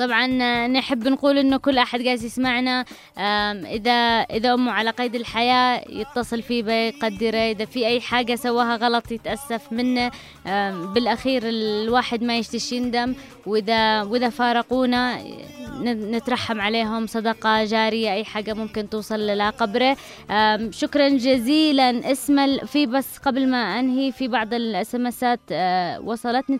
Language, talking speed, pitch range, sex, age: English, 125 wpm, 225-270 Hz, female, 20-39